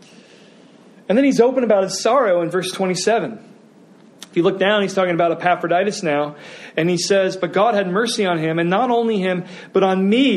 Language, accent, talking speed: English, American, 205 wpm